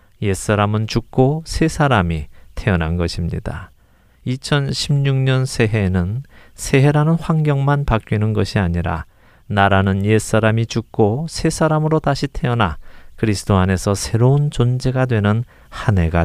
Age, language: 40-59, Korean